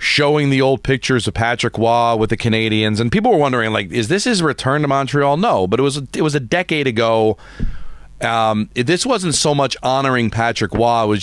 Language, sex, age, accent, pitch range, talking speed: English, male, 40-59, American, 95-120 Hz, 210 wpm